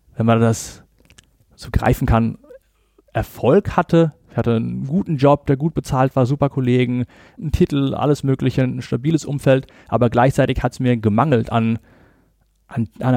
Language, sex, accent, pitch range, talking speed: German, male, German, 115-145 Hz, 150 wpm